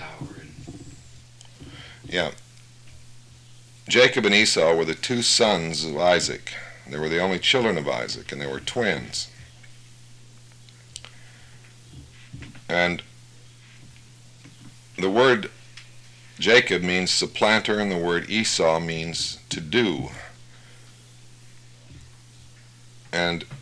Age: 50-69